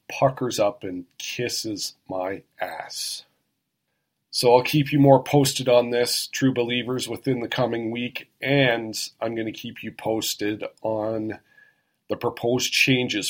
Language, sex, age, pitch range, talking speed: English, male, 40-59, 110-135 Hz, 140 wpm